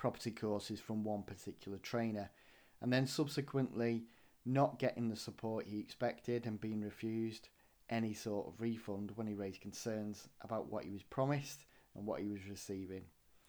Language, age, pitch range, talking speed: English, 30-49, 105-130 Hz, 160 wpm